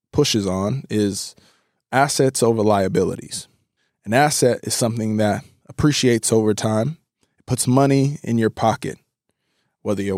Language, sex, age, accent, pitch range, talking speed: English, male, 20-39, American, 110-145 Hz, 130 wpm